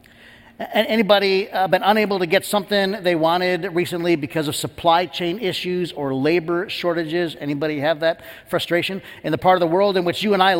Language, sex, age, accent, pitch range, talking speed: English, male, 50-69, American, 155-200 Hz, 180 wpm